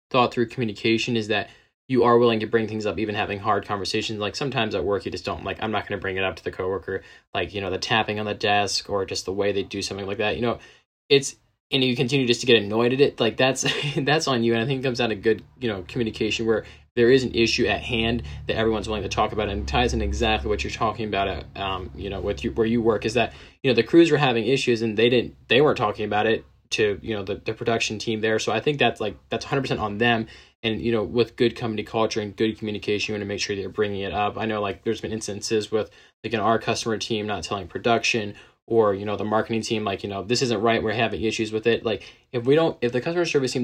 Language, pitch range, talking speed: English, 105-120 Hz, 280 wpm